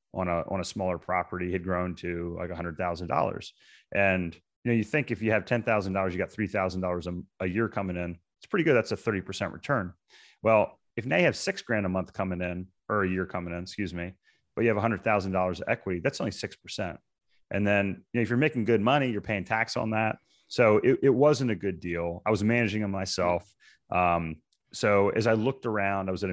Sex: male